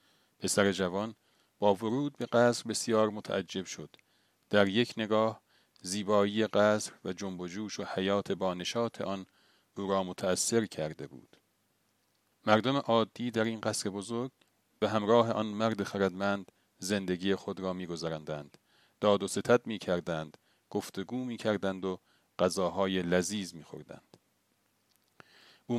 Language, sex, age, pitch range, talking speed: Persian, male, 40-59, 95-115 Hz, 135 wpm